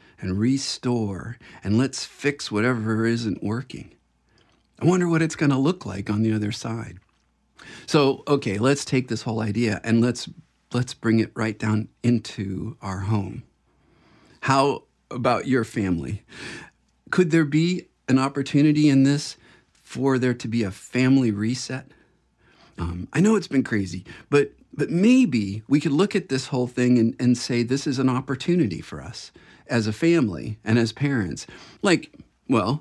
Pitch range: 110-140 Hz